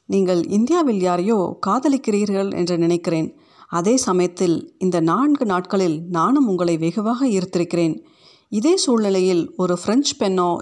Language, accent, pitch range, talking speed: Tamil, native, 175-215 Hz, 115 wpm